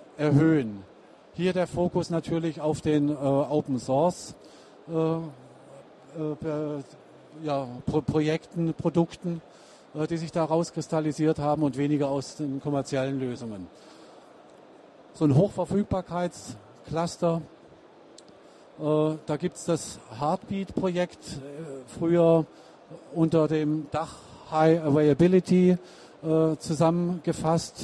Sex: male